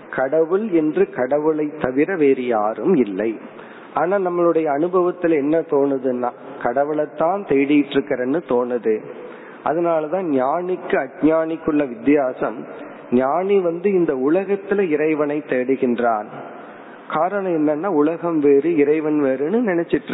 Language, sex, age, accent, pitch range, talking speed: Tamil, male, 40-59, native, 130-170 Hz, 100 wpm